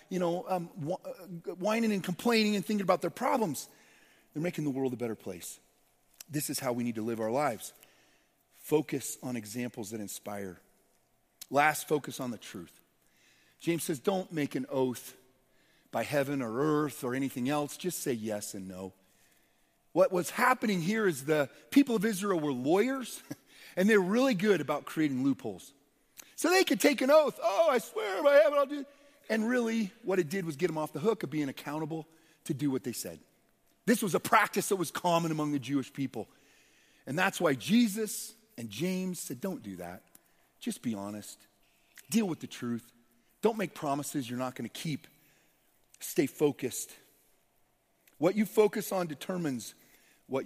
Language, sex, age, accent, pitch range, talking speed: English, male, 40-59, American, 130-205 Hz, 175 wpm